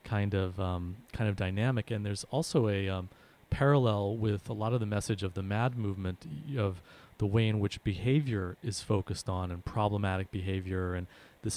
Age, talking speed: 30-49, 185 wpm